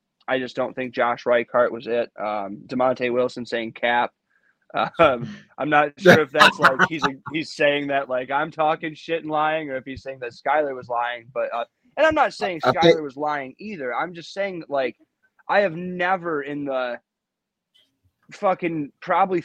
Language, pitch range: English, 125-155 Hz